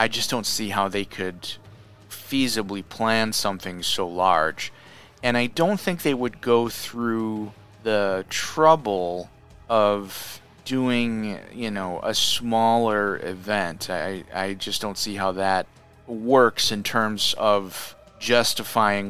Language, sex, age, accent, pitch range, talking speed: English, male, 30-49, American, 95-110 Hz, 130 wpm